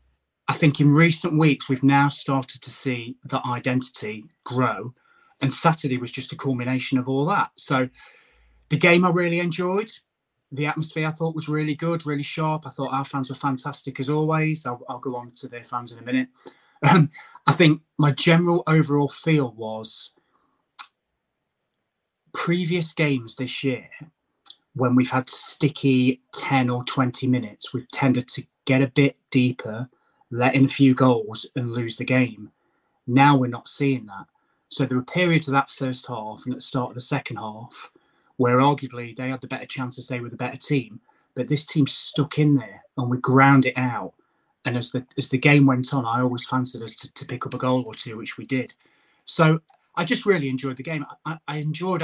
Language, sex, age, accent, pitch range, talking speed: English, male, 20-39, British, 125-150 Hz, 195 wpm